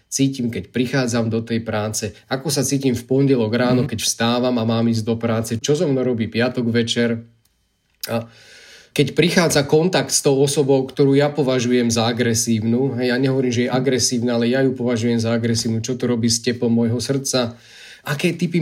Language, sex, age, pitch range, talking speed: Slovak, male, 30-49, 115-145 Hz, 185 wpm